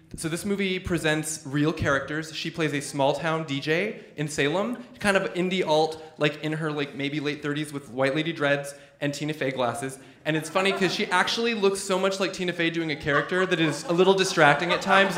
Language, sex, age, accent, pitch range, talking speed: English, male, 20-39, American, 130-165 Hz, 215 wpm